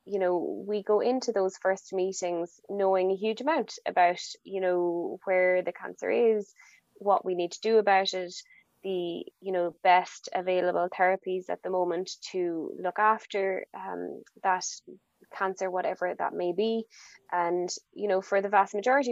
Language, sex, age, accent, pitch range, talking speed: English, female, 20-39, Irish, 180-200 Hz, 165 wpm